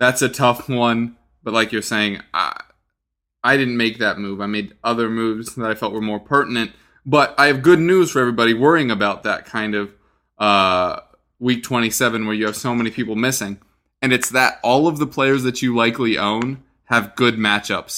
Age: 20-39